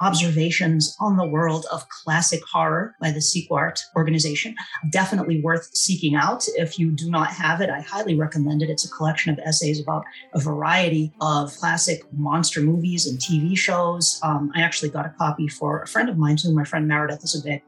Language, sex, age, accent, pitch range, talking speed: English, female, 40-59, American, 150-175 Hz, 195 wpm